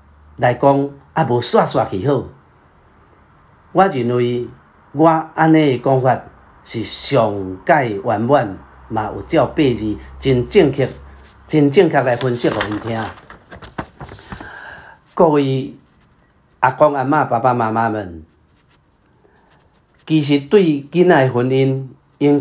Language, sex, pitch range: Chinese, male, 100-145 Hz